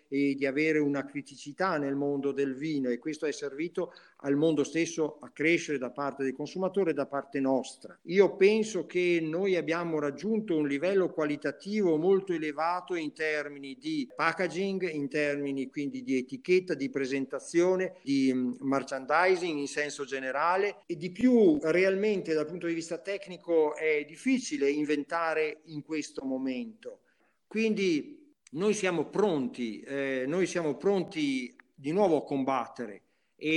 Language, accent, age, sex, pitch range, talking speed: Italian, native, 50-69, male, 145-190 Hz, 145 wpm